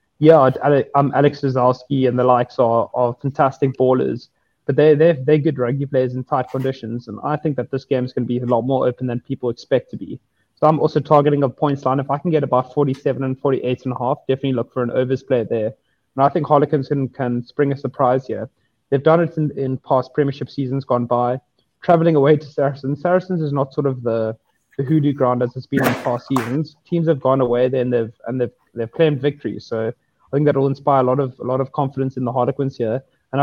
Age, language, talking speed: 20-39, English, 240 wpm